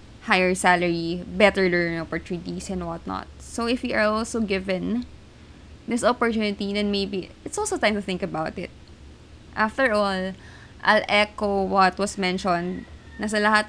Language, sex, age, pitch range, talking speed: Filipino, female, 20-39, 175-215 Hz, 140 wpm